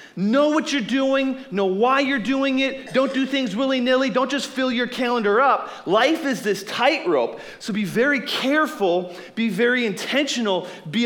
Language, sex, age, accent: English, male, 40-59, American